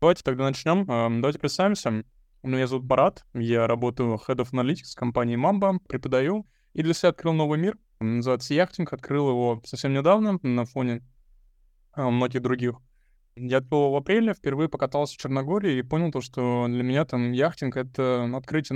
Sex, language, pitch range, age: male, Russian, 125-155 Hz, 20-39